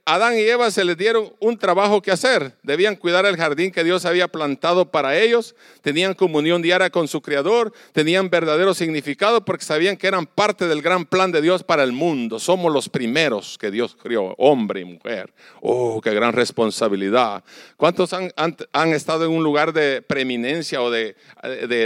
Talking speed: 185 wpm